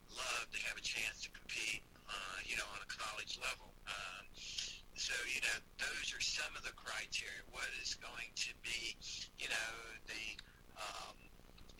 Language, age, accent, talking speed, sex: English, 60-79, American, 170 wpm, male